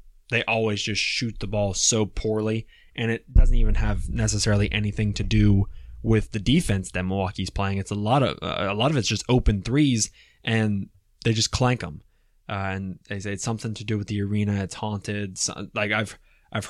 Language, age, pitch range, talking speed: English, 20-39, 95-115 Hz, 200 wpm